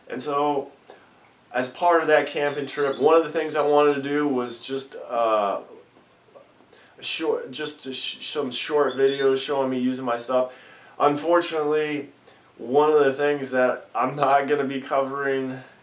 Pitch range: 125-145 Hz